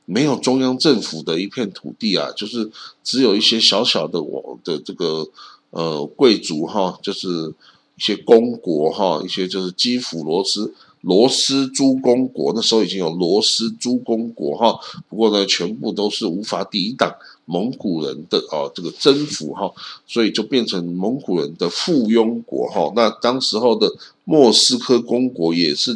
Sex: male